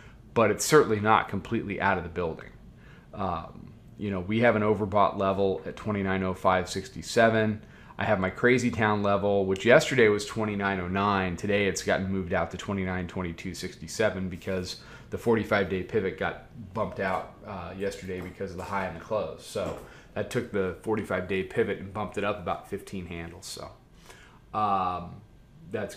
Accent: American